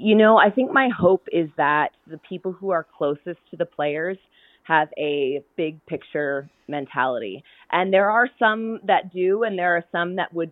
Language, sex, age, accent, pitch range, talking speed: English, female, 20-39, American, 165-195 Hz, 190 wpm